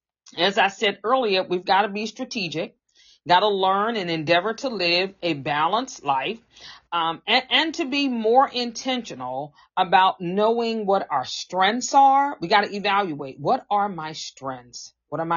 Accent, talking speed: American, 165 wpm